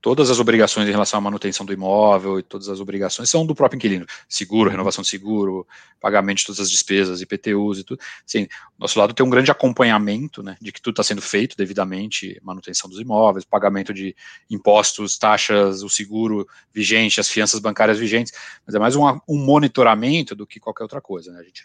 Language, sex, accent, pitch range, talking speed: Portuguese, male, Brazilian, 95-110 Hz, 200 wpm